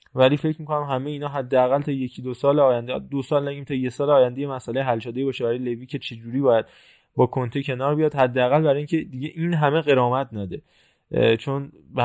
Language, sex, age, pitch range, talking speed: Persian, male, 20-39, 125-150 Hz, 210 wpm